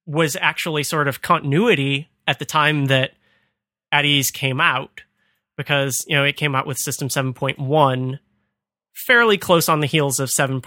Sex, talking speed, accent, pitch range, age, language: male, 150 wpm, American, 135-160 Hz, 30-49, English